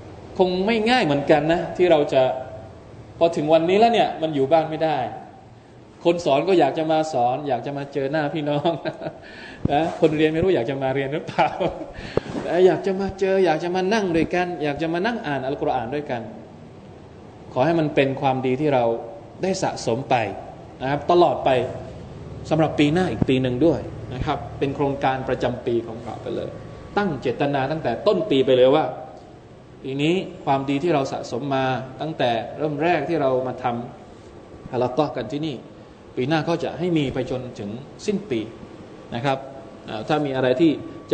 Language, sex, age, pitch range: Thai, male, 20-39, 125-165 Hz